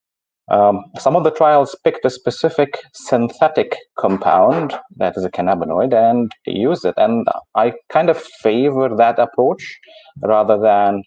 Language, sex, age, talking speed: English, male, 30-49, 145 wpm